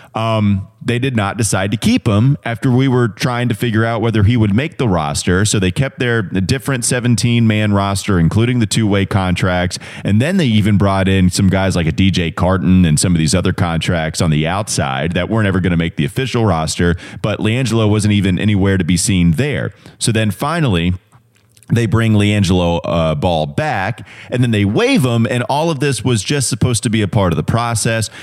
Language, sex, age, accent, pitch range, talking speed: English, male, 30-49, American, 95-120 Hz, 210 wpm